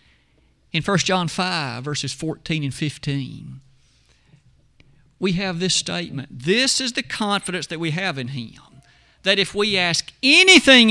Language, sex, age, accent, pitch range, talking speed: English, male, 50-69, American, 145-190 Hz, 145 wpm